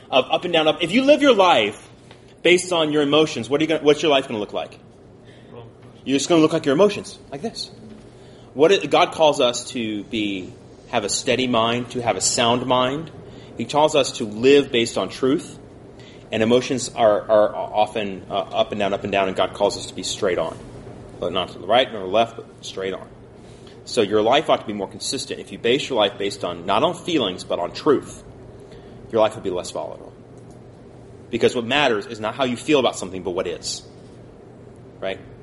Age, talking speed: 30-49, 220 wpm